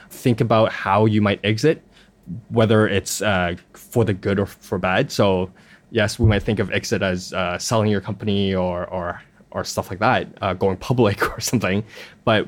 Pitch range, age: 95-115 Hz, 20-39